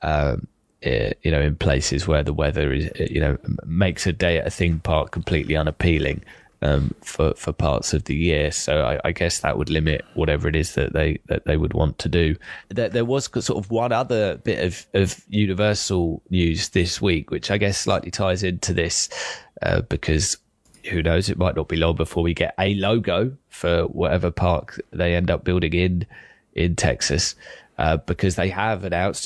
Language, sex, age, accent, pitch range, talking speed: English, male, 20-39, British, 80-95 Hz, 195 wpm